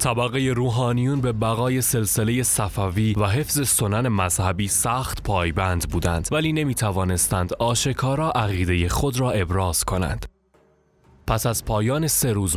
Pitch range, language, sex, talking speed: 95-120 Hz, Persian, male, 125 wpm